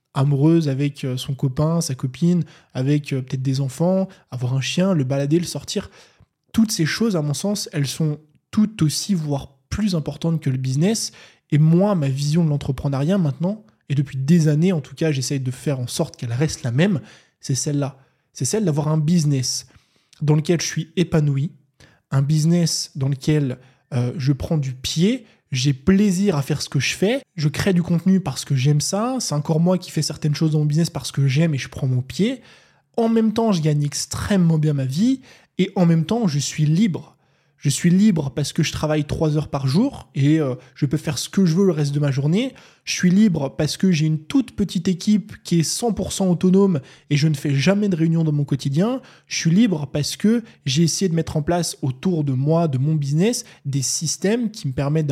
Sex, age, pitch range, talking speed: male, 20-39, 140-180 Hz, 215 wpm